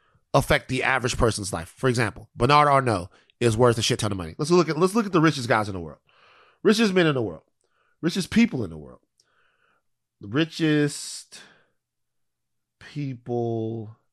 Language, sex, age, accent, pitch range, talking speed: English, male, 30-49, American, 100-140 Hz, 175 wpm